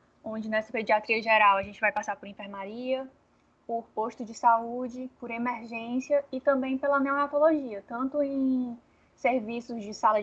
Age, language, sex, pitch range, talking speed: 10-29, Portuguese, female, 220-275 Hz, 145 wpm